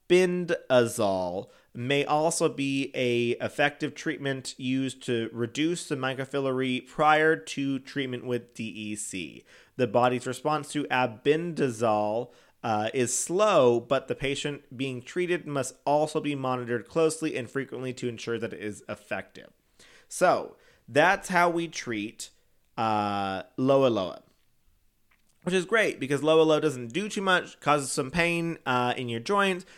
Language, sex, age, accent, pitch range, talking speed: English, male, 30-49, American, 120-155 Hz, 135 wpm